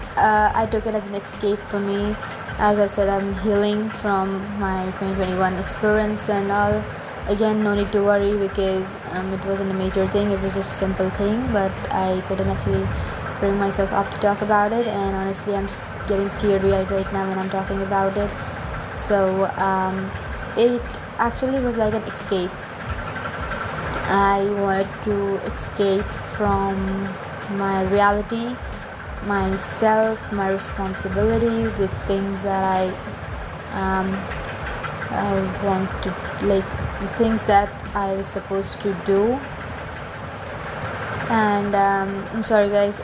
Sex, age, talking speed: female, 20-39, 140 wpm